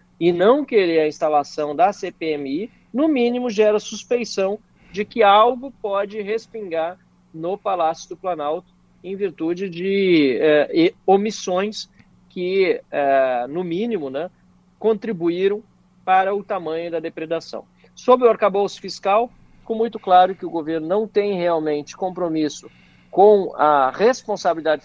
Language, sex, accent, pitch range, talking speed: Portuguese, male, Brazilian, 160-210 Hz, 130 wpm